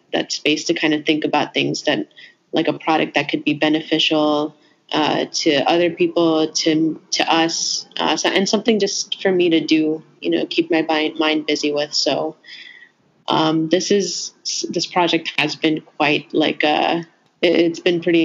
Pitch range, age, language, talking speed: 155-175 Hz, 20-39, English, 175 wpm